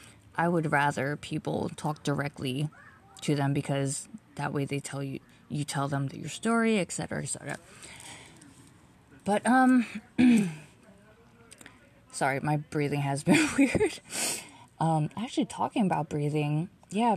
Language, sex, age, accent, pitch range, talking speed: English, female, 20-39, American, 145-185 Hz, 130 wpm